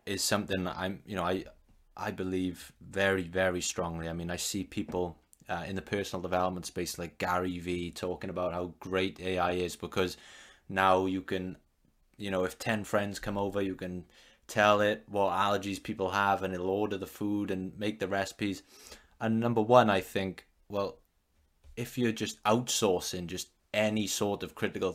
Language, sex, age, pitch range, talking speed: English, male, 20-39, 90-105 Hz, 180 wpm